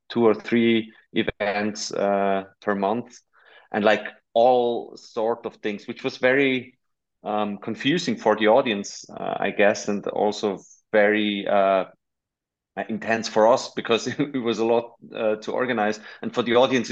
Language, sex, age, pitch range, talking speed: English, male, 30-49, 105-120 Hz, 155 wpm